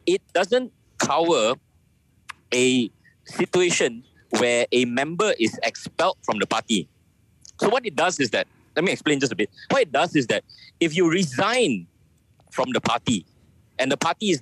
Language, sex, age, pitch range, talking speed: English, male, 50-69, 110-180 Hz, 165 wpm